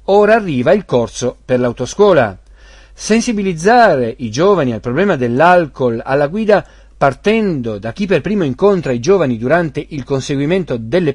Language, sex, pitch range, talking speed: Italian, male, 125-195 Hz, 140 wpm